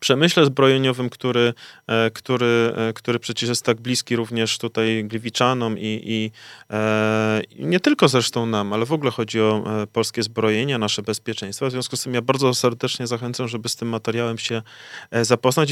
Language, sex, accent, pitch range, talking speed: Polish, male, native, 110-130 Hz, 155 wpm